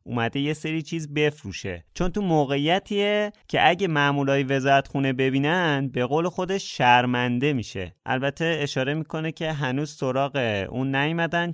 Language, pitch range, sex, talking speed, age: Persian, 110-160 Hz, male, 135 wpm, 30-49